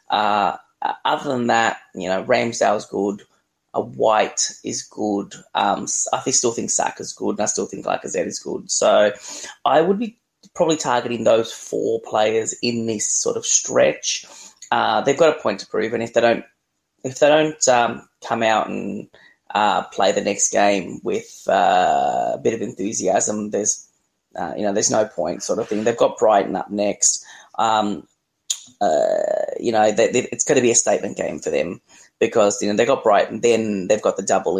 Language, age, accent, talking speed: English, 20-39, Australian, 185 wpm